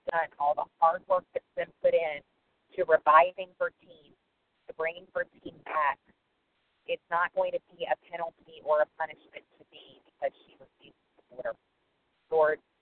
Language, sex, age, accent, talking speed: English, female, 40-59, American, 165 wpm